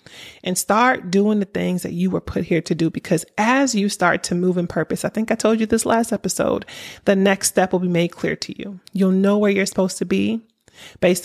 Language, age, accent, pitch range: English, 30-49, American, 185-230 Hz